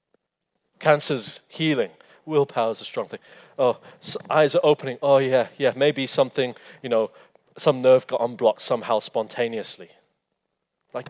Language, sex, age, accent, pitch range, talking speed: English, male, 30-49, British, 125-160 Hz, 140 wpm